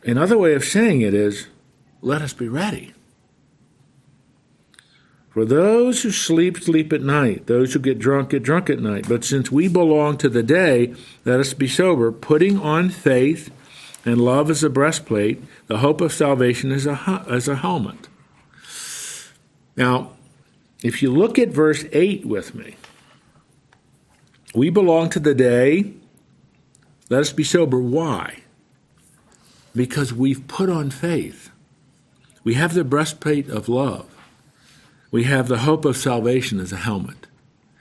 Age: 50-69